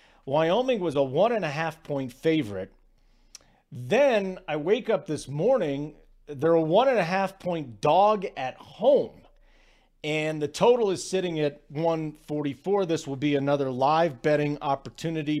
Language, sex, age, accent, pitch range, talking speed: English, male, 40-59, American, 135-190 Hz, 150 wpm